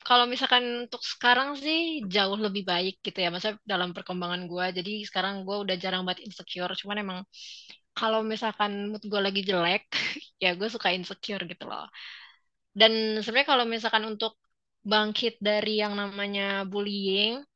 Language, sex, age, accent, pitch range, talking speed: Indonesian, female, 20-39, native, 195-220 Hz, 155 wpm